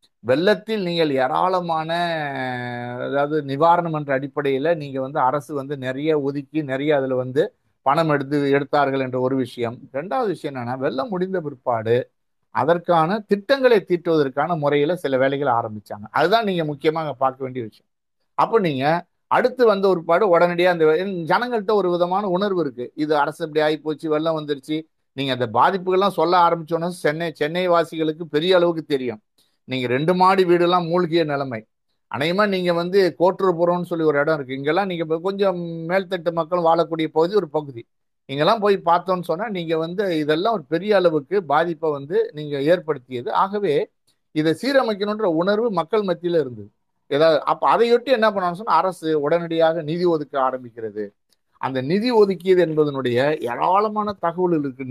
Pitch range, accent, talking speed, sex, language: 140-180 Hz, native, 145 wpm, male, Tamil